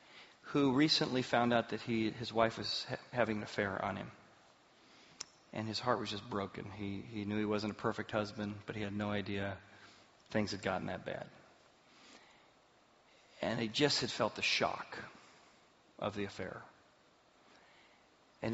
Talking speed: 160 wpm